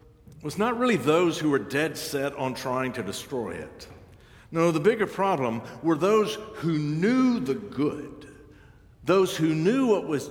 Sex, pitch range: male, 105-150 Hz